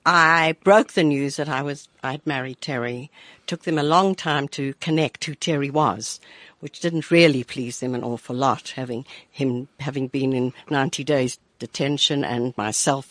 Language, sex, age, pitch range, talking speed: English, female, 60-79, 135-170 Hz, 175 wpm